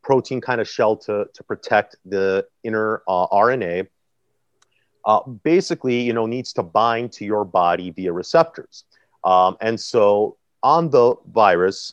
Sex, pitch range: male, 95-115 Hz